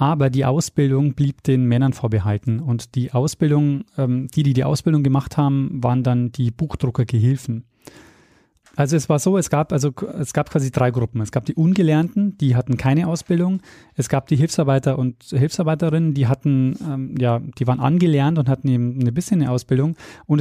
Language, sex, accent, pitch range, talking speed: German, male, German, 125-155 Hz, 175 wpm